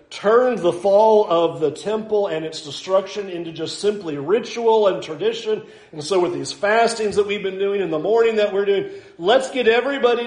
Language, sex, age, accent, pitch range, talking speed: English, male, 50-69, American, 145-205 Hz, 195 wpm